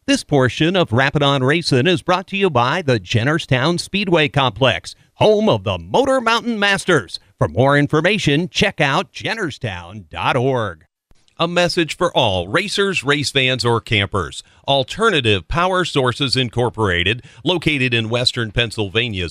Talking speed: 135 wpm